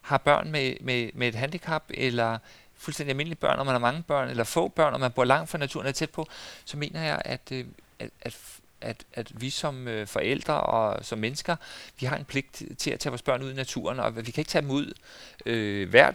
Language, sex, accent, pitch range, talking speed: Danish, male, native, 115-140 Hz, 235 wpm